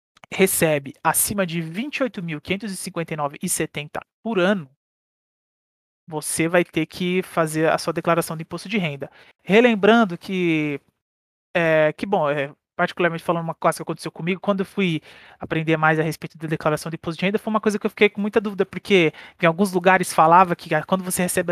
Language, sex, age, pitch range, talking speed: Portuguese, male, 20-39, 160-205 Hz, 175 wpm